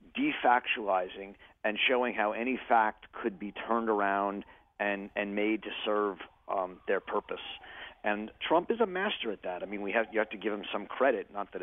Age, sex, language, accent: 40-59, male, English, American